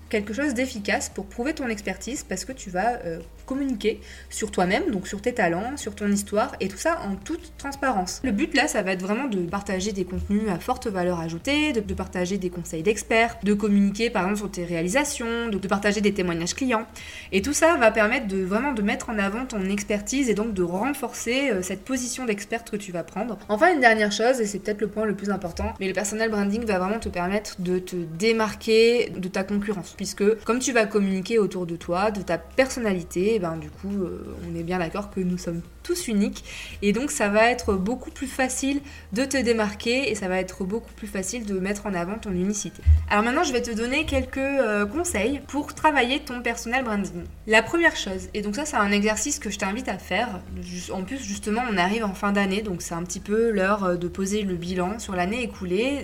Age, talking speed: 20-39, 225 wpm